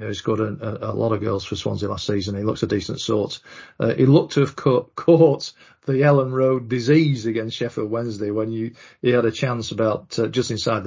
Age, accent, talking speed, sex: 40-59, British, 240 wpm, male